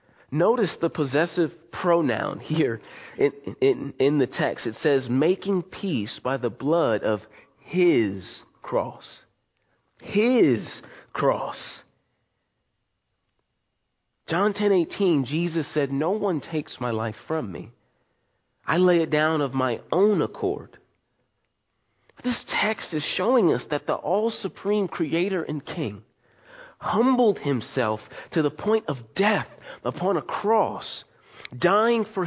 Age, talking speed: 40-59, 125 wpm